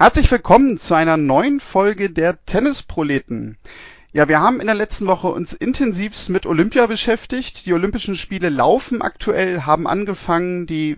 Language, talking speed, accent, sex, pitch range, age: German, 155 wpm, German, male, 160-215 Hz, 40-59